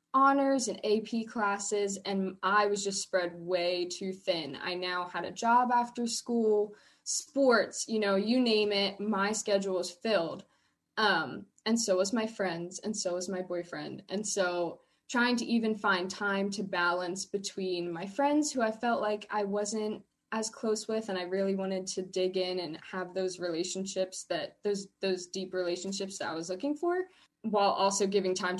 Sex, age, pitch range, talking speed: female, 10-29, 185-215 Hz, 180 wpm